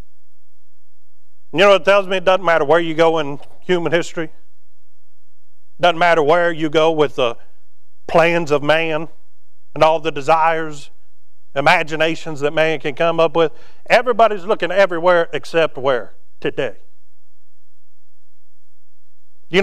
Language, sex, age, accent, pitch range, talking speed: English, male, 40-59, American, 125-175 Hz, 130 wpm